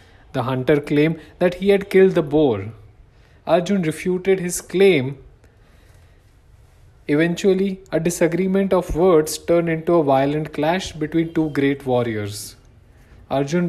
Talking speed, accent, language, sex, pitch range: 125 wpm, Indian, English, male, 115-170 Hz